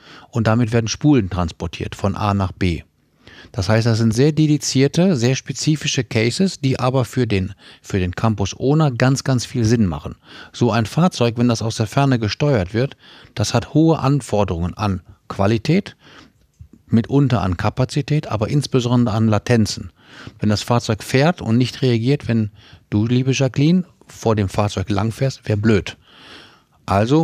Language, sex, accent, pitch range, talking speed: German, male, German, 100-135 Hz, 160 wpm